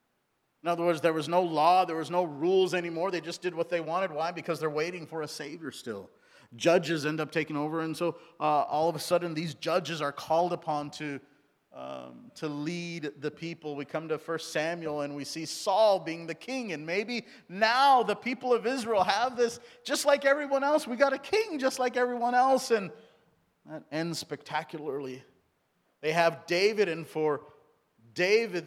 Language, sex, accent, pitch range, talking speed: English, male, American, 145-185 Hz, 195 wpm